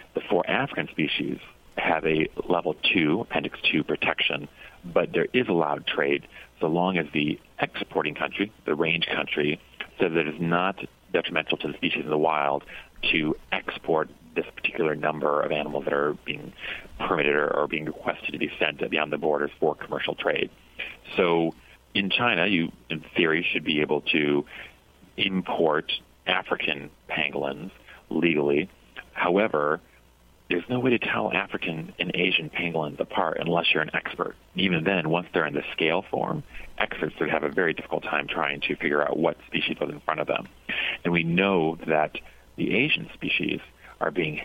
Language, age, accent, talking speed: English, 40-59, American, 170 wpm